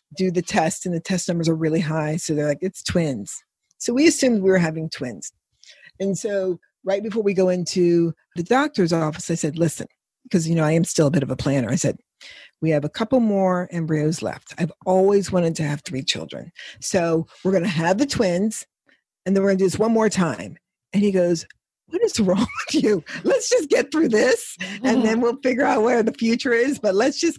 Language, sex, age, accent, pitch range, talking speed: English, female, 50-69, American, 165-220 Hz, 230 wpm